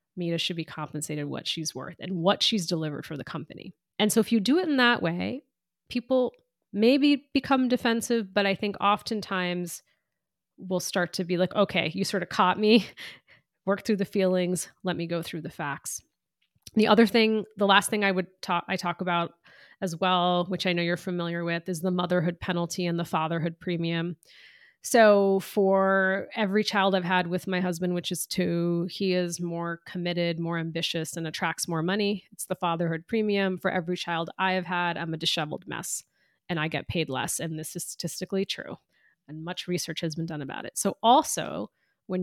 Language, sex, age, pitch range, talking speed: English, female, 30-49, 170-200 Hz, 195 wpm